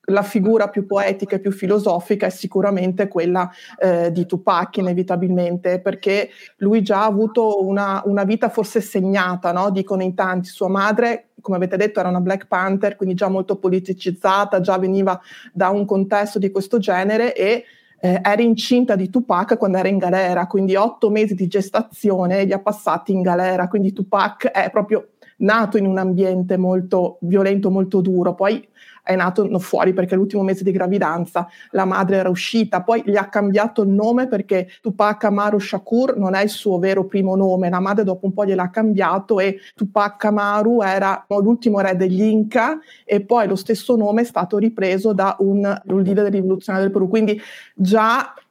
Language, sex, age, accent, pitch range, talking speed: Italian, female, 30-49, native, 190-210 Hz, 175 wpm